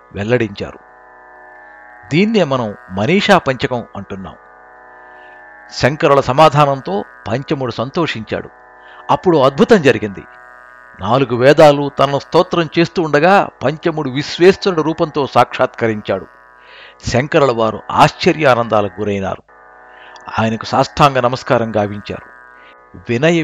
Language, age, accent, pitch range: Telugu, 60-79, native, 100-150 Hz